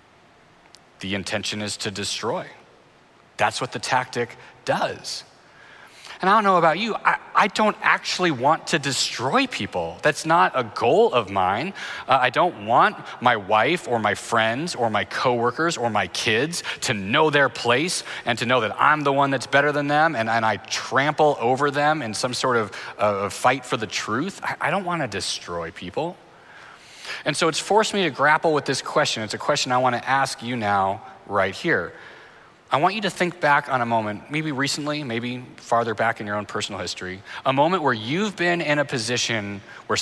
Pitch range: 105-145 Hz